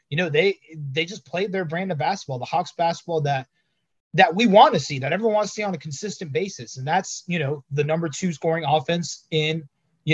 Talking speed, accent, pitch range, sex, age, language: 230 wpm, American, 135-165 Hz, male, 30-49, English